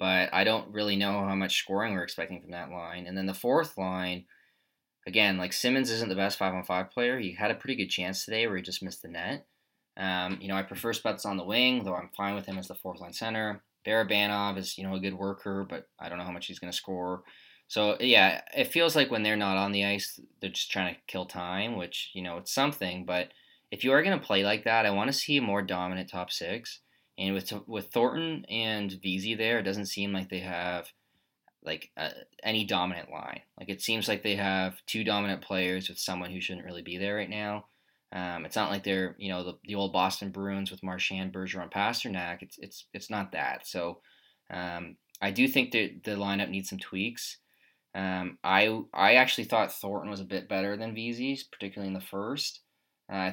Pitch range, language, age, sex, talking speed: 95-105 Hz, English, 20-39, male, 225 wpm